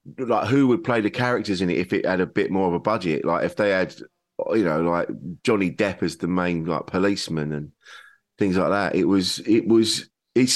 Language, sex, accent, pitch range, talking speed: English, male, British, 110-155 Hz, 225 wpm